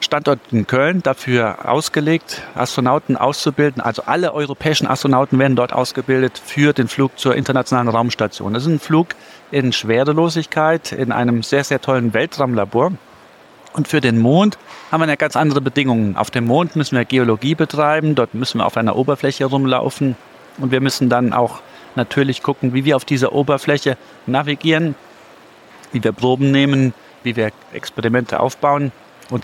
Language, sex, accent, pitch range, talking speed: English, male, German, 120-145 Hz, 160 wpm